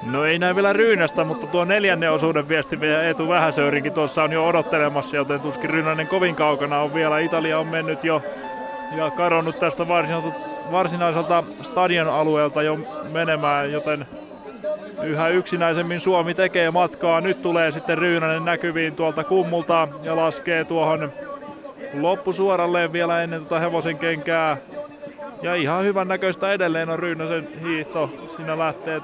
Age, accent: 20-39, native